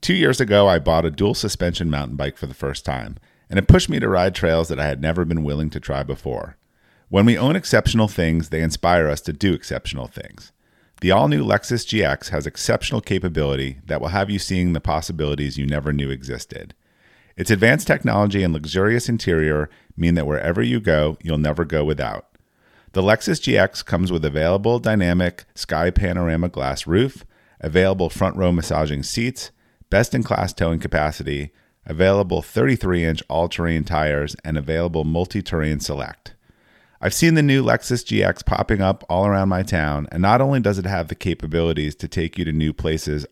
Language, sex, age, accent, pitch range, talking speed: English, male, 40-59, American, 75-100 Hz, 180 wpm